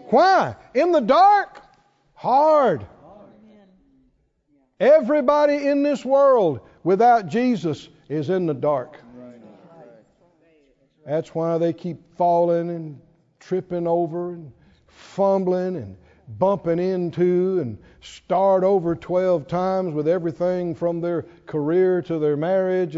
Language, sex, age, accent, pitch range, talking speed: English, male, 60-79, American, 155-235 Hz, 105 wpm